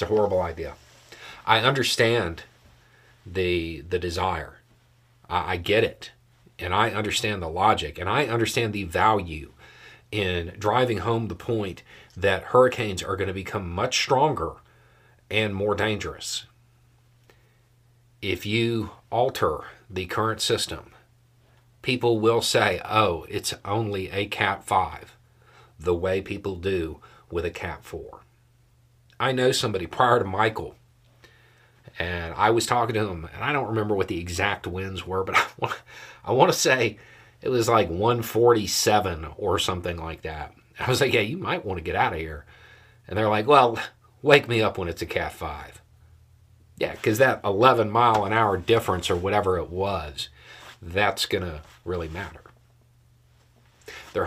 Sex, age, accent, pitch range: male, 40-59, American, 95-120 Hz